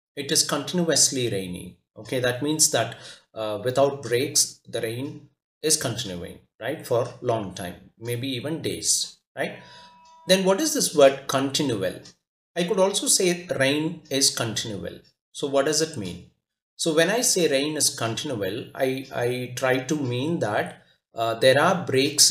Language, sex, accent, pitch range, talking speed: English, male, Indian, 110-150 Hz, 155 wpm